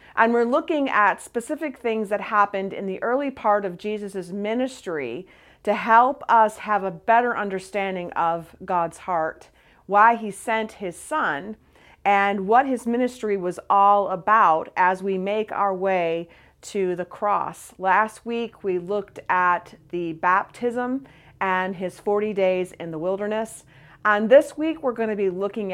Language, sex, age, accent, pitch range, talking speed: English, female, 40-59, American, 180-215 Hz, 155 wpm